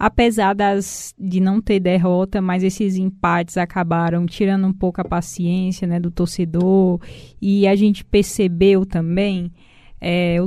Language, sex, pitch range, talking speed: Portuguese, female, 185-230 Hz, 130 wpm